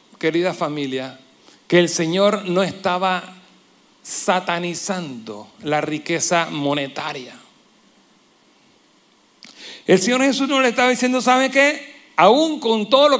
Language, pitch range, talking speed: Spanish, 180-260 Hz, 110 wpm